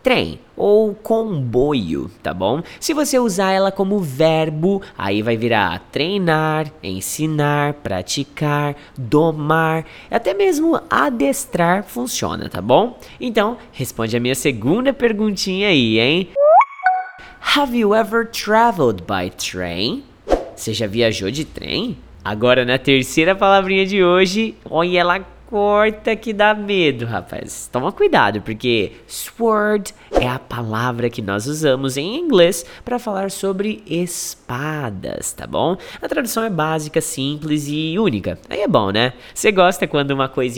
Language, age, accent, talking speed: English, 20-39, Brazilian, 135 wpm